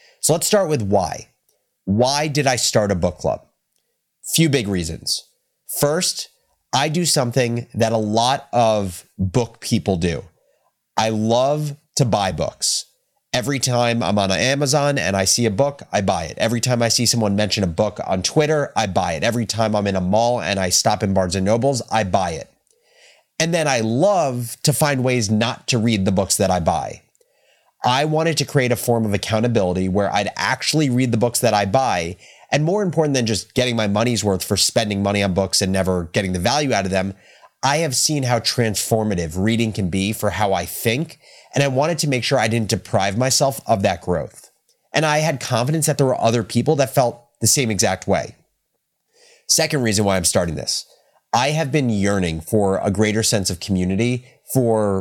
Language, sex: English, male